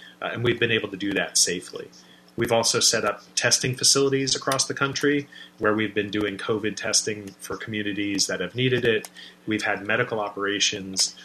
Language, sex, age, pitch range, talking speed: English, male, 30-49, 95-110 Hz, 180 wpm